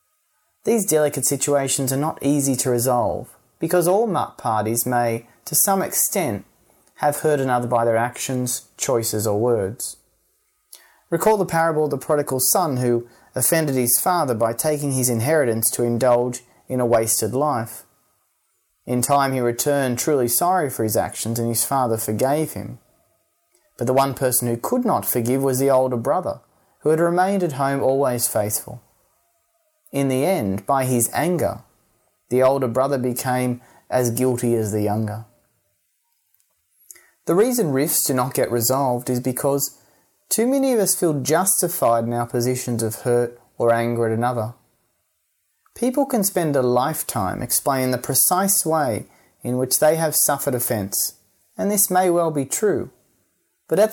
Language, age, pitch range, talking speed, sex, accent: English, 30-49, 120-155 Hz, 155 wpm, male, Australian